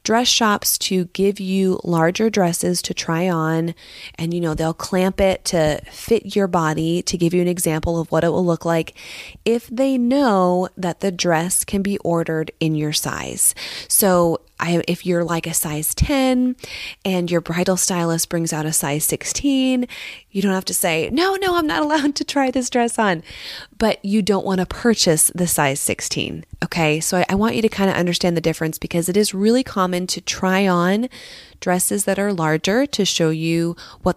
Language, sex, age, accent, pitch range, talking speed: English, female, 30-49, American, 170-210 Hz, 195 wpm